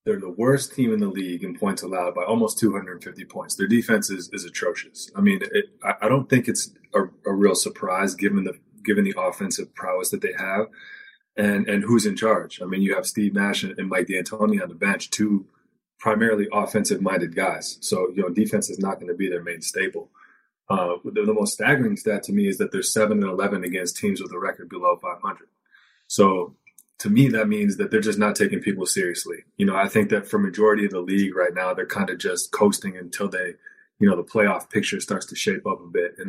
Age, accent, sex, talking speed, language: 20-39, American, male, 225 wpm, English